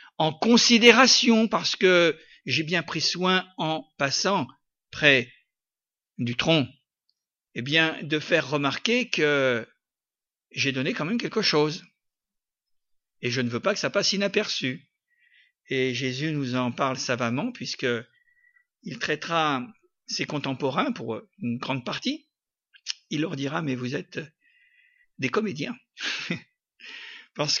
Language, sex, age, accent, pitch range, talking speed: French, male, 50-69, French, 160-240 Hz, 130 wpm